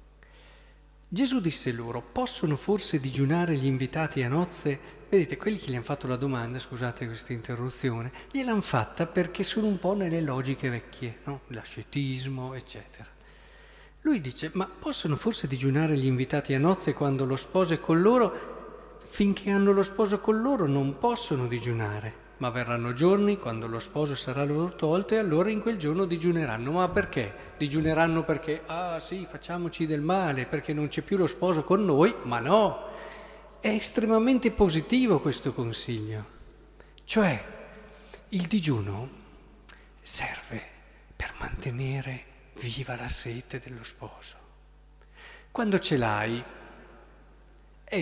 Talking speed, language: 140 wpm, Italian